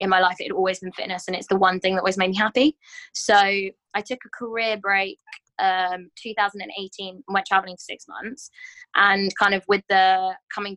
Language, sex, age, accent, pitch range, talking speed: English, female, 20-39, British, 185-215 Hz, 210 wpm